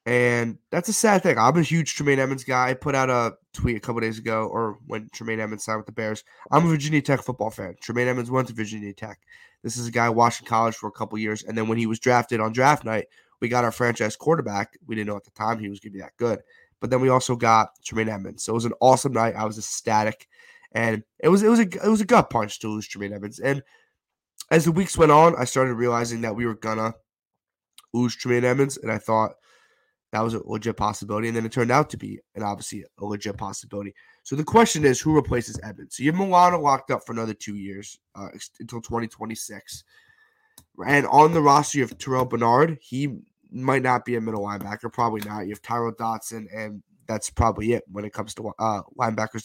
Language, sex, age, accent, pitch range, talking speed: English, male, 20-39, American, 110-135 Hz, 235 wpm